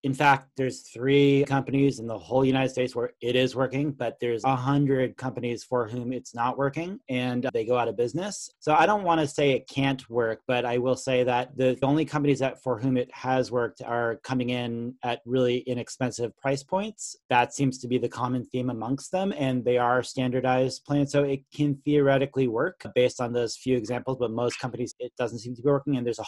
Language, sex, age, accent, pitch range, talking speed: English, male, 30-49, American, 120-135 Hz, 220 wpm